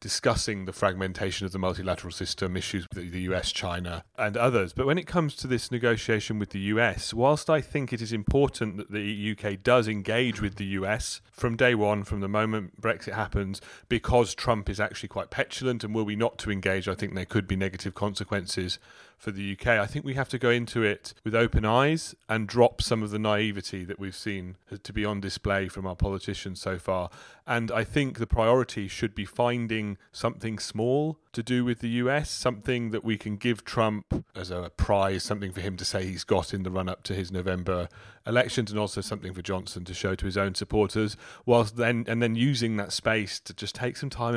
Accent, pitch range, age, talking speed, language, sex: British, 95-115 Hz, 30-49, 215 wpm, English, male